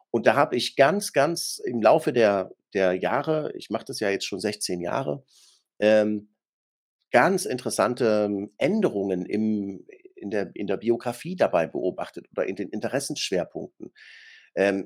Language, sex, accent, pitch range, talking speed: German, male, German, 100-125 Hz, 145 wpm